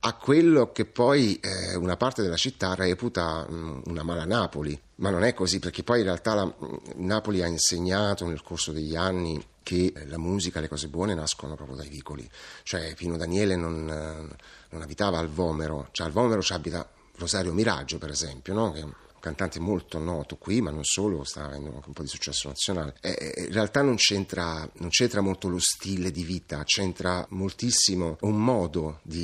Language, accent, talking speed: Italian, native, 195 wpm